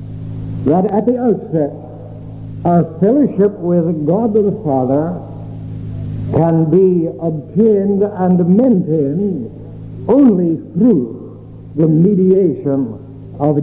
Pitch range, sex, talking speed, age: 130-185 Hz, male, 90 wpm, 60-79